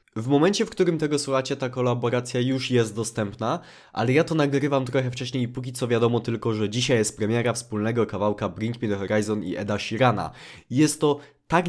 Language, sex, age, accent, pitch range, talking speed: Polish, male, 20-39, native, 115-150 Hz, 195 wpm